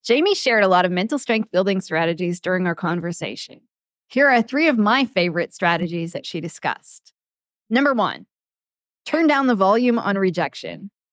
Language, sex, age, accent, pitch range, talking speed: English, female, 20-39, American, 180-240 Hz, 155 wpm